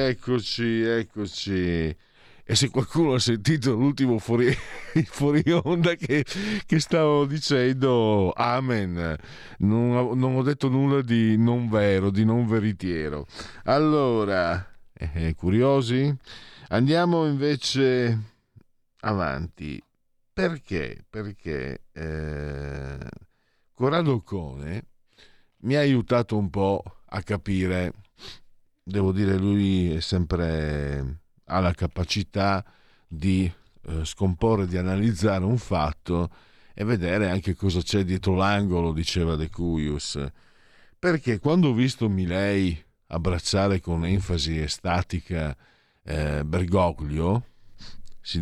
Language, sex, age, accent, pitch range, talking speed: Italian, male, 50-69, native, 85-120 Hz, 105 wpm